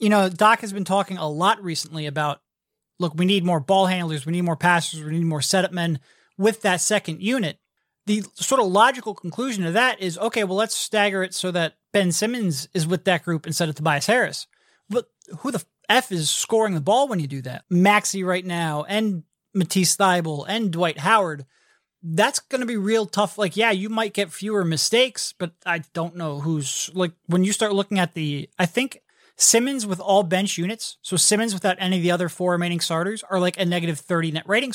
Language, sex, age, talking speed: English, male, 30-49, 215 wpm